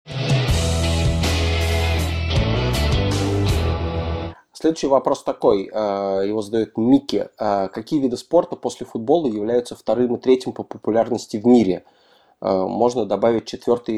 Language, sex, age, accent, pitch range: Russian, male, 20-39, native, 105-125 Hz